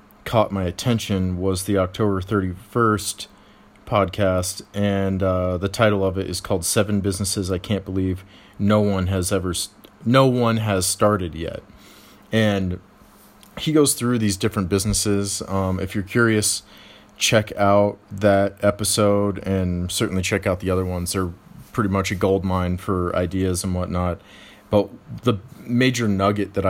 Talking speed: 150 wpm